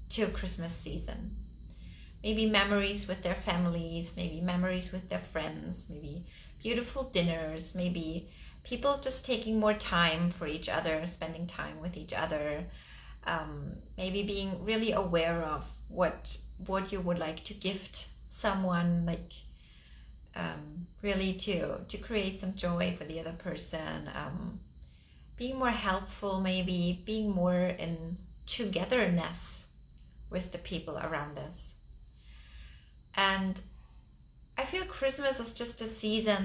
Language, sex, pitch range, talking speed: English, female, 160-210 Hz, 130 wpm